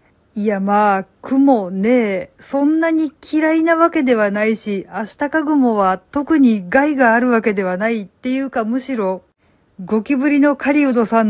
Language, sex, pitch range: Japanese, female, 200-265 Hz